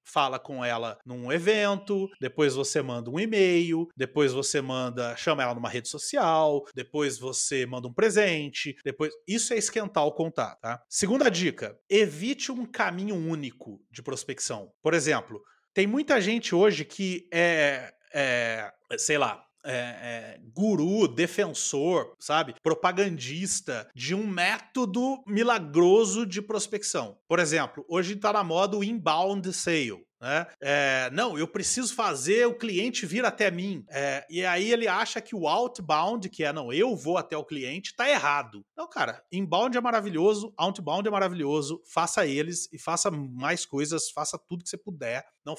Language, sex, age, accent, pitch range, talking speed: Portuguese, male, 30-49, Brazilian, 145-210 Hz, 155 wpm